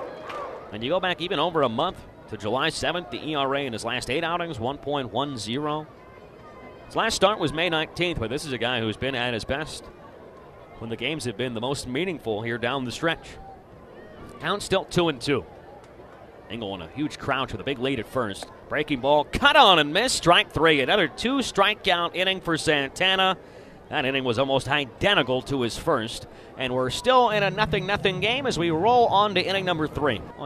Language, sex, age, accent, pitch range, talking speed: English, male, 30-49, American, 120-175 Hz, 200 wpm